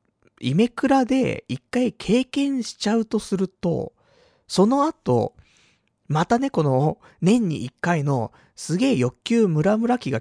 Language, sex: Japanese, male